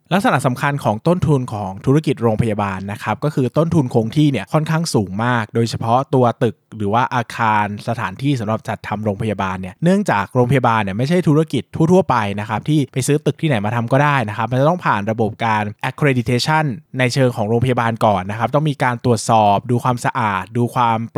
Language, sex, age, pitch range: Thai, male, 20-39, 115-150 Hz